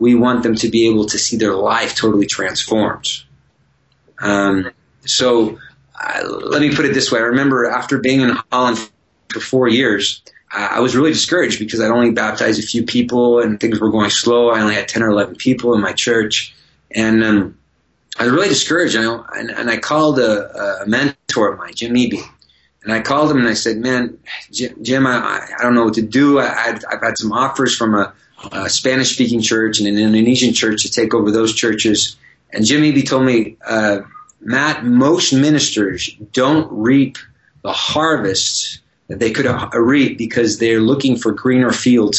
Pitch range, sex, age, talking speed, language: 110-130 Hz, male, 30-49, 190 wpm, English